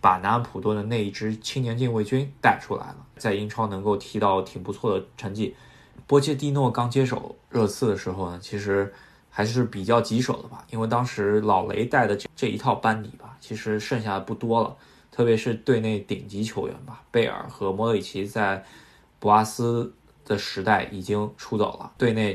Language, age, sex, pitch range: Chinese, 20-39, male, 100-120 Hz